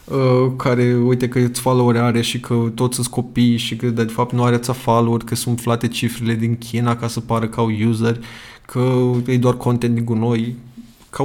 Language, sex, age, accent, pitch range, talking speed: Romanian, male, 20-39, native, 120-140 Hz, 205 wpm